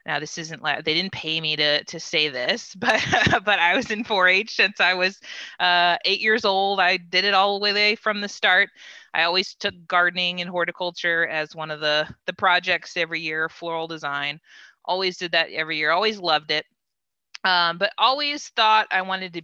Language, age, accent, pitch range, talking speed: English, 20-39, American, 155-200 Hz, 200 wpm